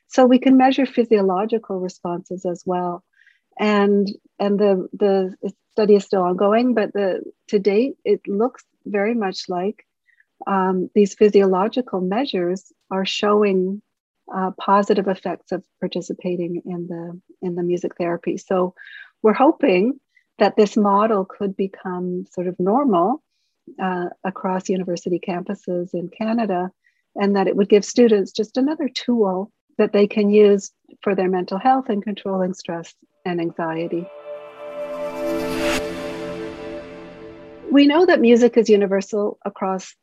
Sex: female